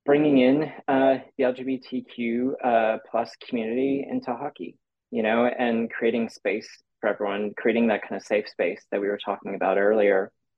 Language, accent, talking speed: English, American, 165 wpm